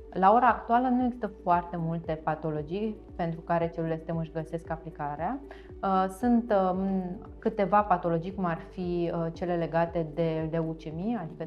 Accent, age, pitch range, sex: native, 20-39, 165-200 Hz, female